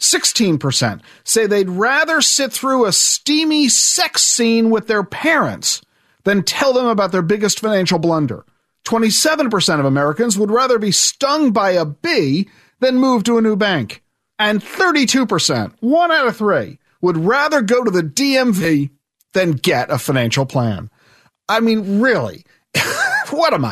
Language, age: English, 40-59